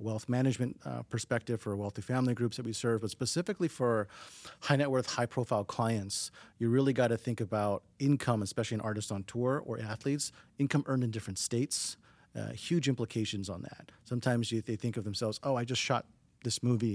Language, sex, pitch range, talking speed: English, male, 110-125 Hz, 195 wpm